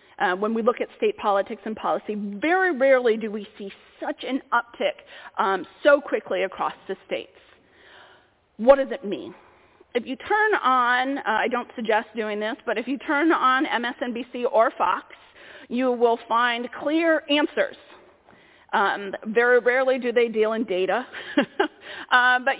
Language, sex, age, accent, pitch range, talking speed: English, female, 40-59, American, 220-275 Hz, 160 wpm